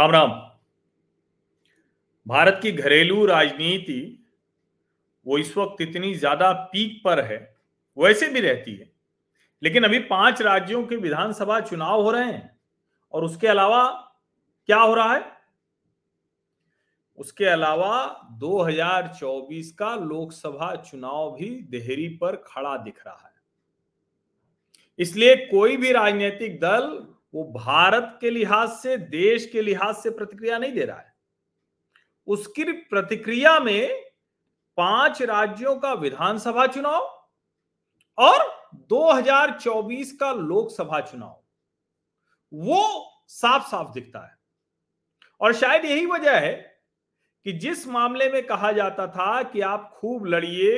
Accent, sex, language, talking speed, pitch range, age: native, male, Hindi, 120 wpm, 180-245 Hz, 40-59